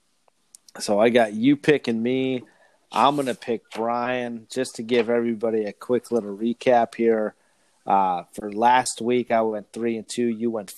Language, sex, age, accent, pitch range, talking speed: English, male, 40-59, American, 105-125 Hz, 175 wpm